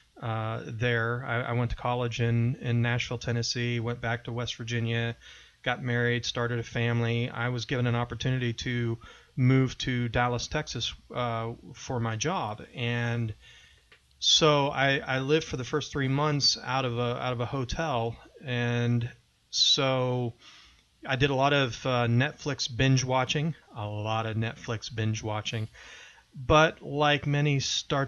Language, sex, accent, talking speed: English, male, American, 155 wpm